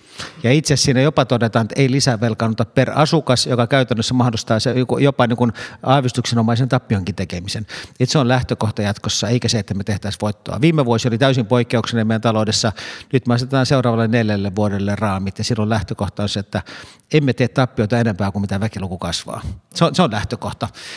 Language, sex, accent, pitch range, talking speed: Finnish, male, native, 110-135 Hz, 175 wpm